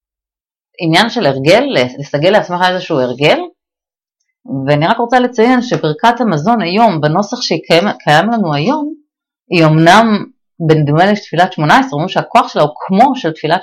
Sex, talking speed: female, 140 wpm